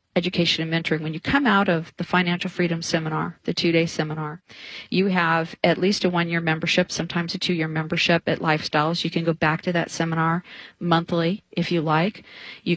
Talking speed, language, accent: 200 wpm, English, American